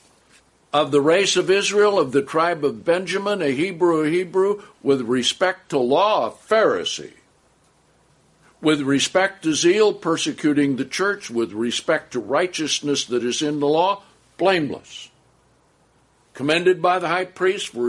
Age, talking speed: 60-79, 145 wpm